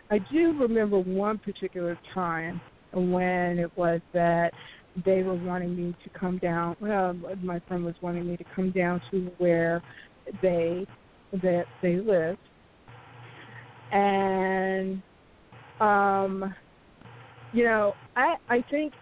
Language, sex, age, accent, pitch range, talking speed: English, female, 50-69, American, 175-195 Hz, 125 wpm